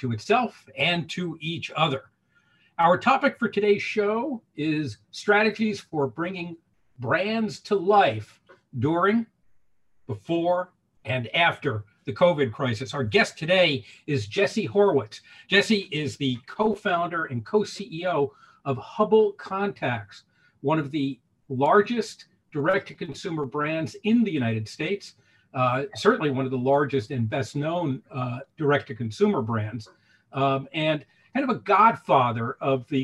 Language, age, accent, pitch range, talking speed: English, 50-69, American, 130-180 Hz, 125 wpm